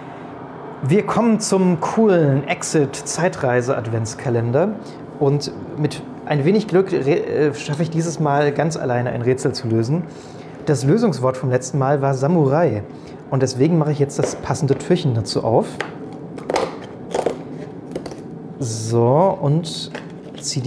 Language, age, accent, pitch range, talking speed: German, 30-49, German, 125-155 Hz, 115 wpm